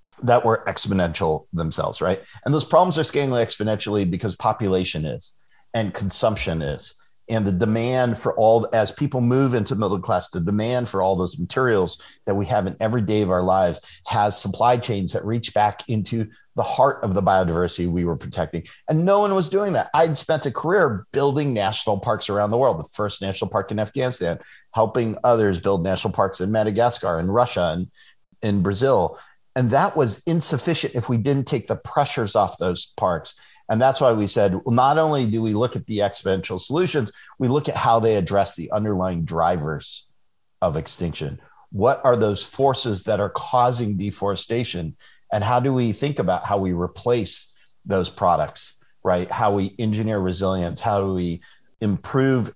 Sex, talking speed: male, 180 wpm